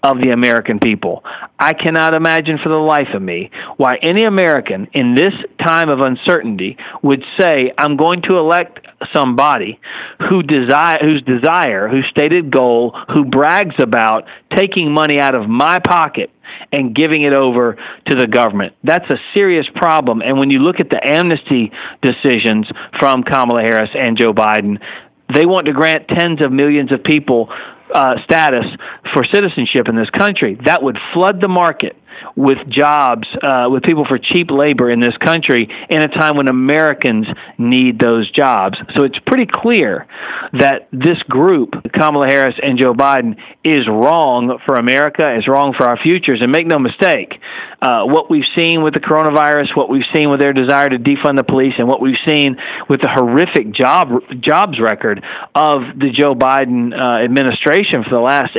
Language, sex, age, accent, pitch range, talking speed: English, male, 40-59, American, 130-160 Hz, 170 wpm